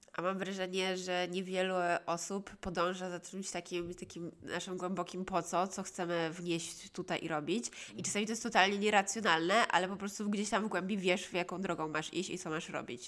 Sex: female